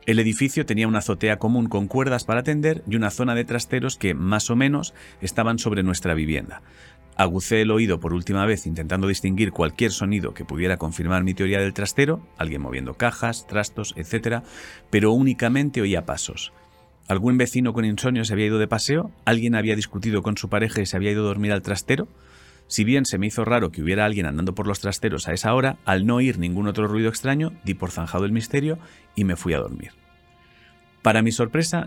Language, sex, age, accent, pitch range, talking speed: Spanish, male, 40-59, Spanish, 90-115 Hz, 205 wpm